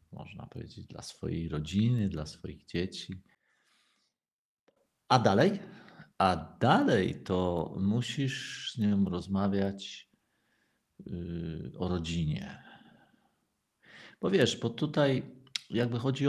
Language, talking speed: Polish, 90 wpm